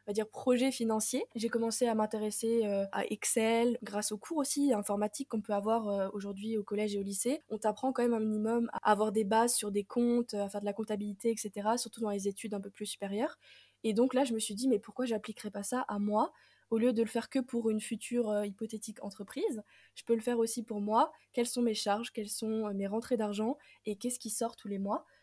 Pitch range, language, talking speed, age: 205-235 Hz, French, 240 wpm, 20-39